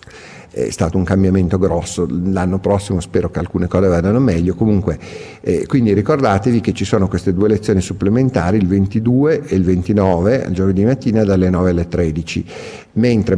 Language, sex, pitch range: Italian, male, 85-105 Hz